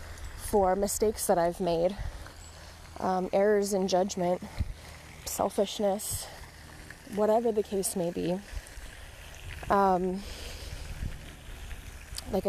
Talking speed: 80 wpm